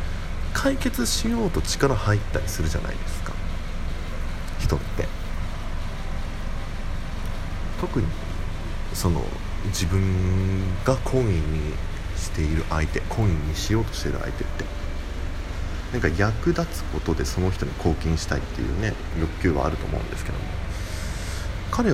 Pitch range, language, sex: 80-95 Hz, Japanese, male